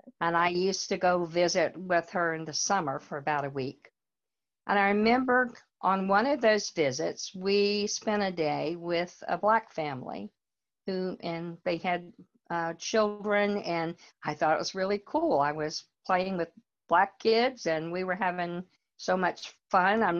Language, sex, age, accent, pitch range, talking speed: English, female, 50-69, American, 165-205 Hz, 170 wpm